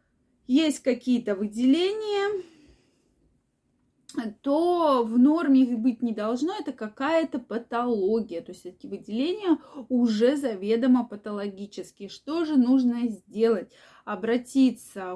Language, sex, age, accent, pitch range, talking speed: Russian, female, 20-39, native, 215-295 Hz, 100 wpm